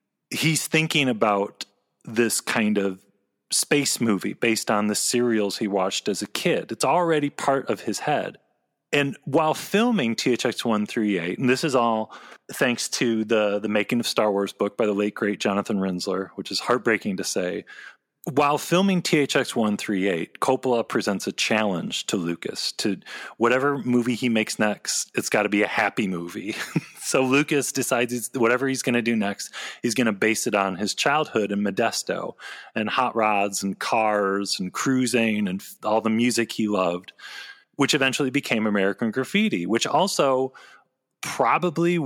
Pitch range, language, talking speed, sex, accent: 105-135 Hz, English, 165 wpm, male, American